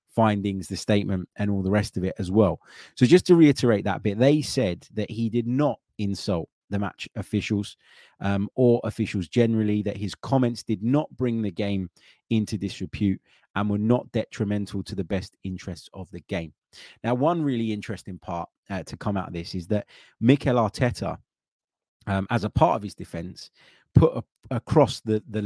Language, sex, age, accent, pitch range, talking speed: English, male, 30-49, British, 100-115 Hz, 185 wpm